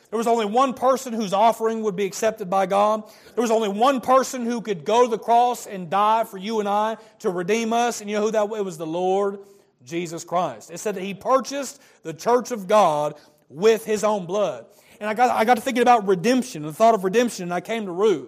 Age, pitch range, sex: 30-49, 200-240 Hz, male